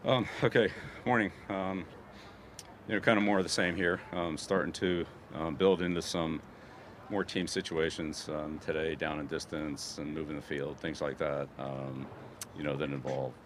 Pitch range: 70-90 Hz